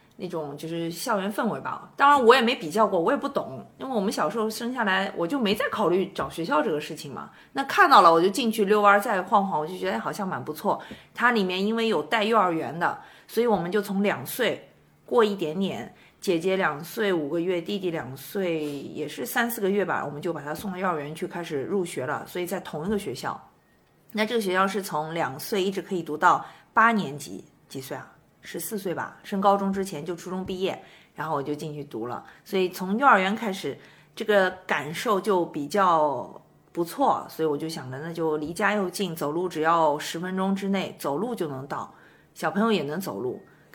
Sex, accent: female, native